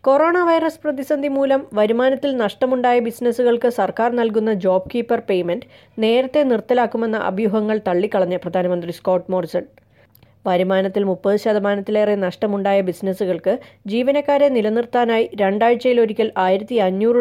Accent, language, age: native, Malayalam, 20-39